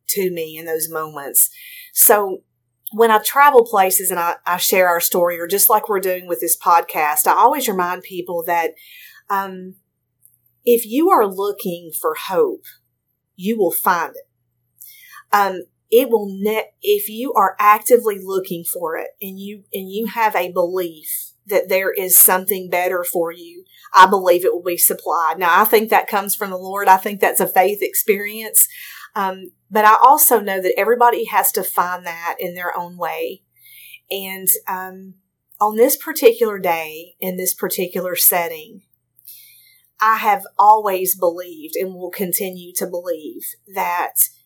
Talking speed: 160 wpm